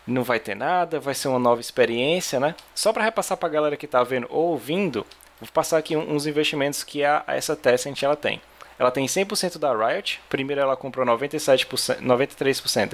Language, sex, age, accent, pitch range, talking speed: Portuguese, male, 20-39, Brazilian, 120-160 Hz, 190 wpm